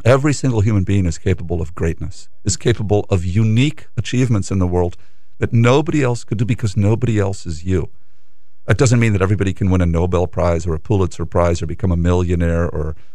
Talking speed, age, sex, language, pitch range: 205 wpm, 50-69, male, English, 90-115 Hz